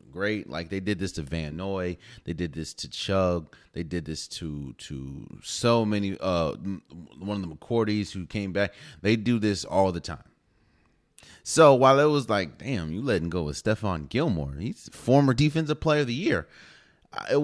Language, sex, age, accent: English, male, 30-49, American